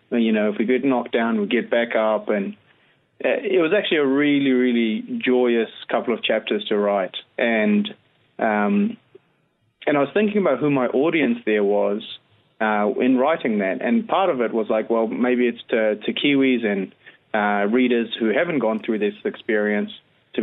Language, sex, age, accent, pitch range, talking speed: English, male, 20-39, Australian, 110-140 Hz, 180 wpm